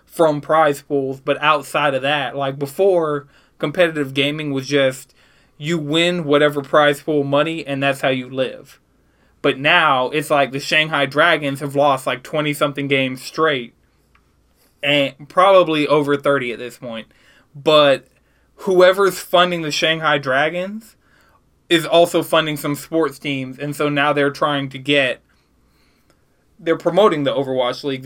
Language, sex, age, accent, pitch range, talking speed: English, male, 20-39, American, 140-160 Hz, 150 wpm